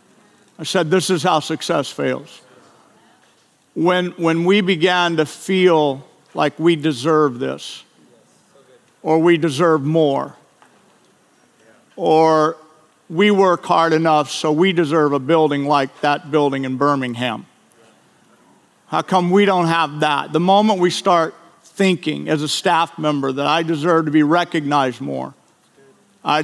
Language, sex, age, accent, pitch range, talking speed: English, male, 50-69, American, 150-195 Hz, 135 wpm